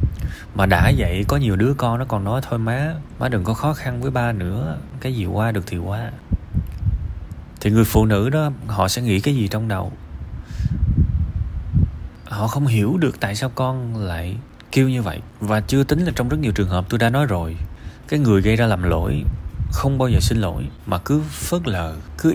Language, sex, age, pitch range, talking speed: Vietnamese, male, 20-39, 85-120 Hz, 210 wpm